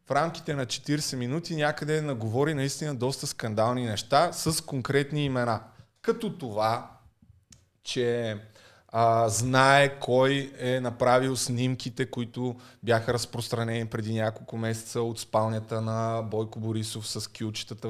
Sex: male